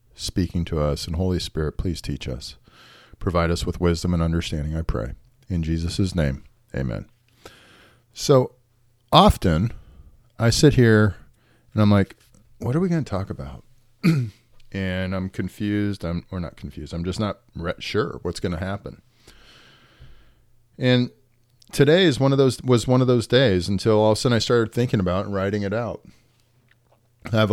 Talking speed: 175 wpm